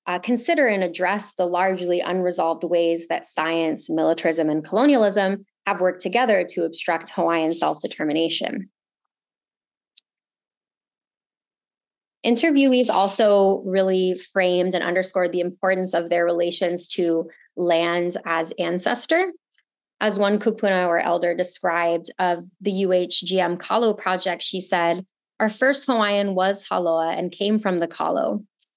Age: 20-39